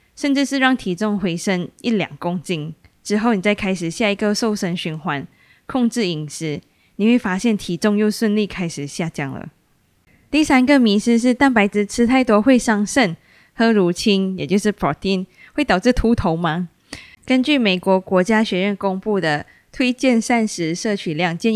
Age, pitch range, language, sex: 20-39, 175-225 Hz, Chinese, female